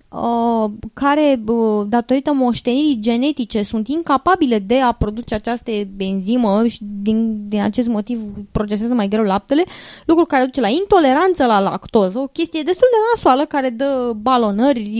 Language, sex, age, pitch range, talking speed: English, female, 20-39, 220-280 Hz, 140 wpm